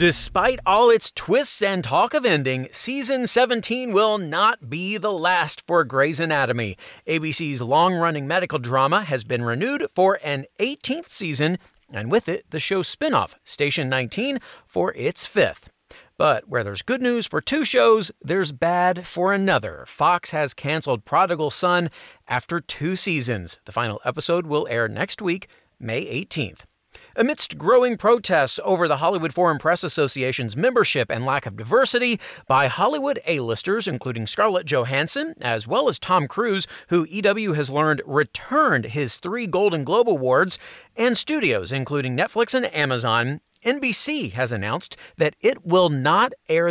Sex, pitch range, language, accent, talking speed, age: male, 140-210 Hz, English, American, 150 wpm, 40-59